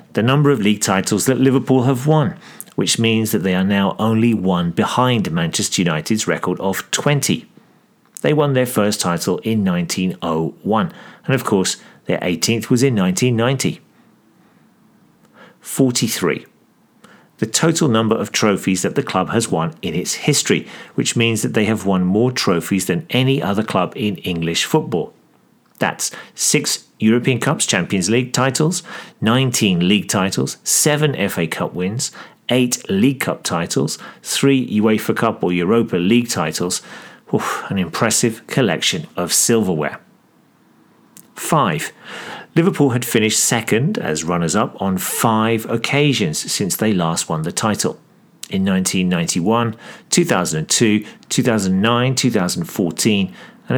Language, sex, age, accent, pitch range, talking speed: English, male, 40-59, British, 100-140 Hz, 135 wpm